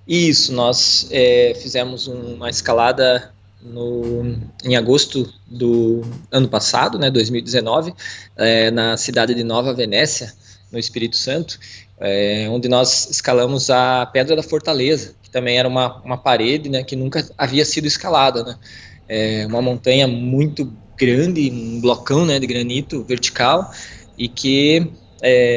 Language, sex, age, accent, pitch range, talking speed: Portuguese, male, 20-39, Brazilian, 115-135 Hz, 125 wpm